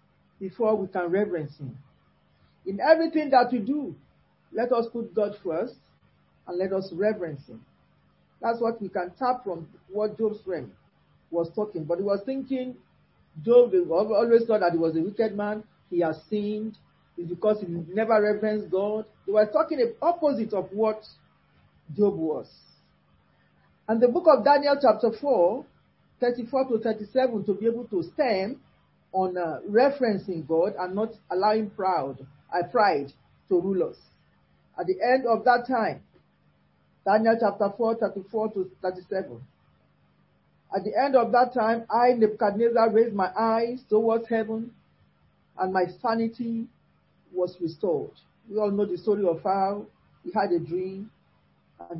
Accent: Nigerian